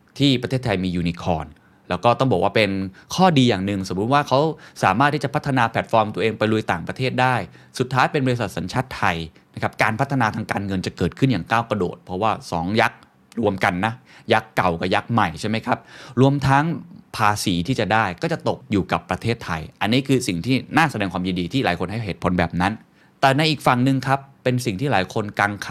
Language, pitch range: Thai, 95-130 Hz